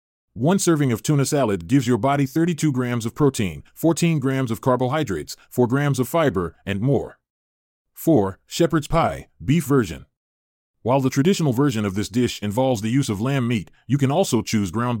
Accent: American